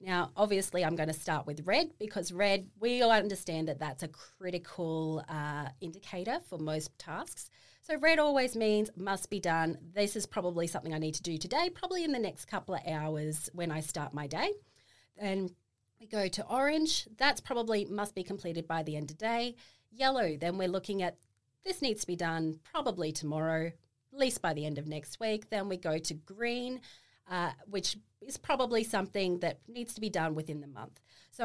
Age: 30-49